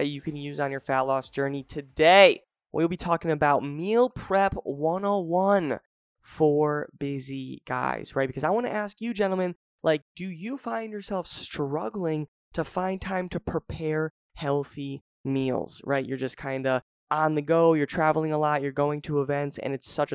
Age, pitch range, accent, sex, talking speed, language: 20-39, 145-185 Hz, American, male, 175 wpm, English